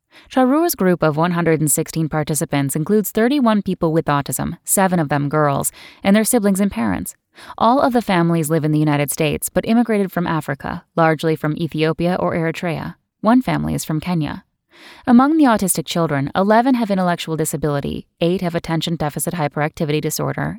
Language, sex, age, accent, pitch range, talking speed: English, female, 10-29, American, 155-195 Hz, 165 wpm